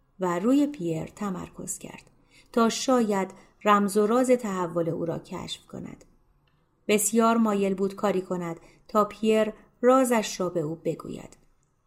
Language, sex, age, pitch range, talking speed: Persian, female, 30-49, 175-215 Hz, 135 wpm